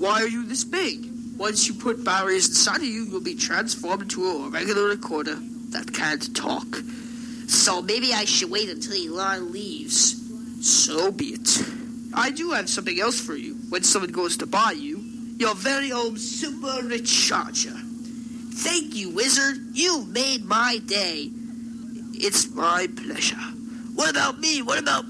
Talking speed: 160 wpm